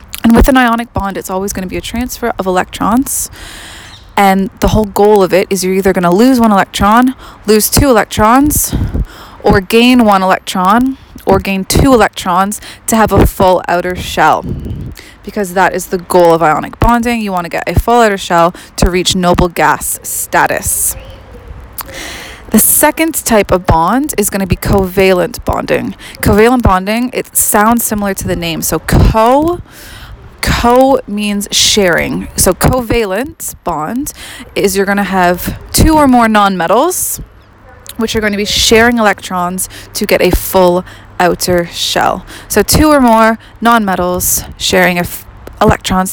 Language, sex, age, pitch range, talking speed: English, female, 20-39, 185-235 Hz, 160 wpm